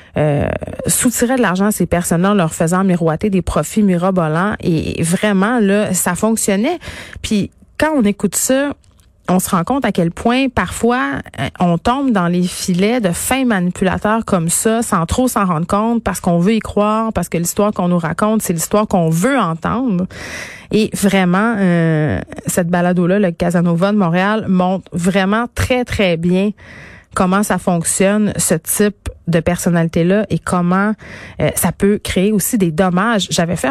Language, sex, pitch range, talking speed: French, female, 170-210 Hz, 170 wpm